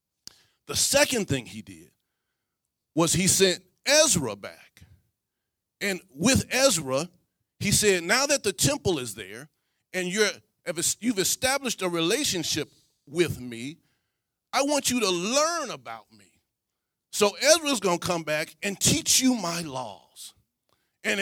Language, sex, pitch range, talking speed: English, male, 160-225 Hz, 135 wpm